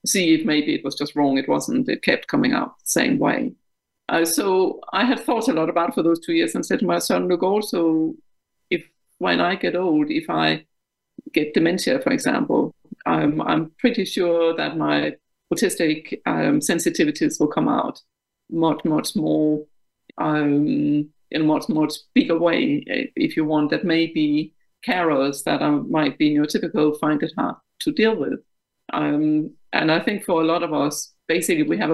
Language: English